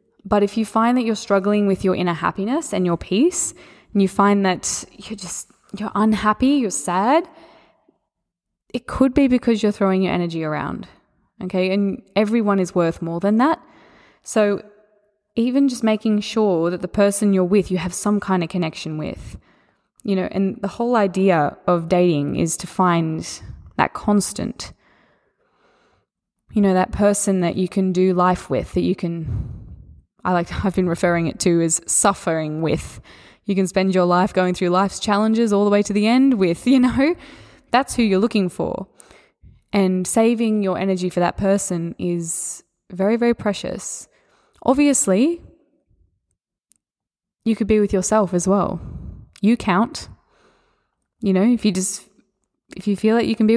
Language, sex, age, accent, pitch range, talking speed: English, female, 20-39, Australian, 180-225 Hz, 170 wpm